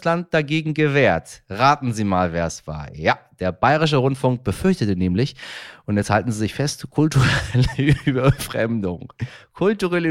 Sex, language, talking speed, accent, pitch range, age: male, German, 135 wpm, German, 105-150 Hz, 30-49